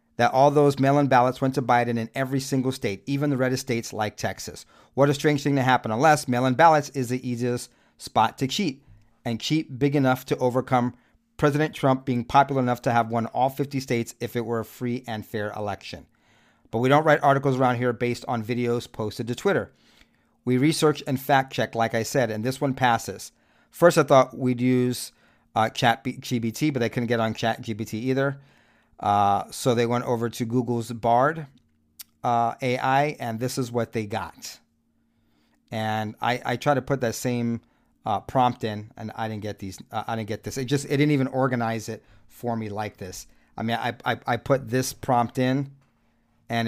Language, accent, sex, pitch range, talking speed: English, American, male, 115-135 Hz, 200 wpm